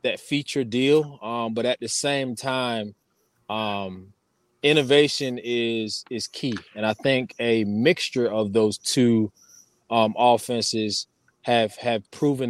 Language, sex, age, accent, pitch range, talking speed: English, male, 20-39, American, 115-135 Hz, 130 wpm